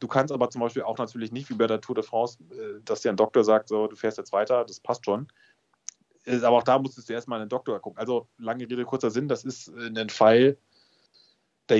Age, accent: 30-49, German